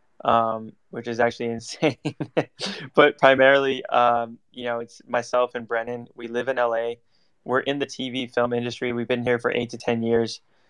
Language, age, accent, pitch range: English, 10-29, American, 115-125 Hz